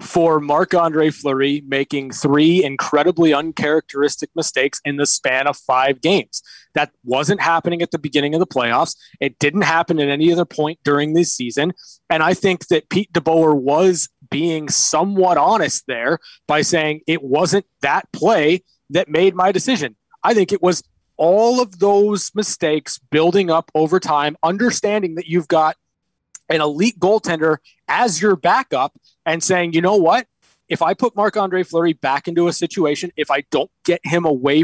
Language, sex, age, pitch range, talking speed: English, male, 20-39, 150-195 Hz, 165 wpm